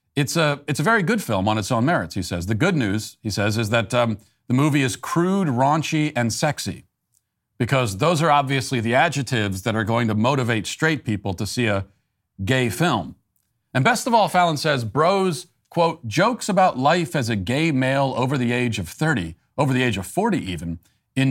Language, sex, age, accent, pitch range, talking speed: English, male, 40-59, American, 110-145 Hz, 205 wpm